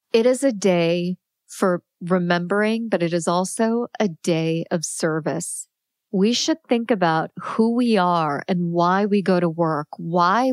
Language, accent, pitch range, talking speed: English, American, 175-220 Hz, 160 wpm